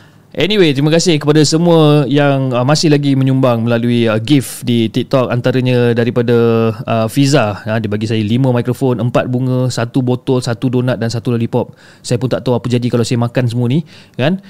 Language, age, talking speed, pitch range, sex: Malay, 20-39, 190 wpm, 105-130 Hz, male